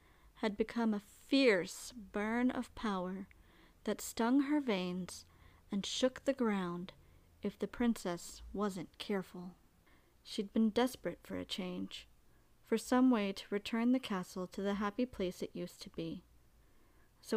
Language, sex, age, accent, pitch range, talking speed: English, female, 40-59, American, 190-255 Hz, 145 wpm